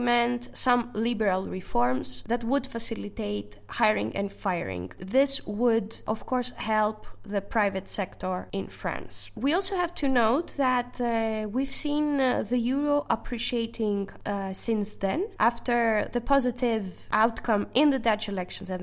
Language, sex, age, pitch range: English, female, 10-29, 200-255 Hz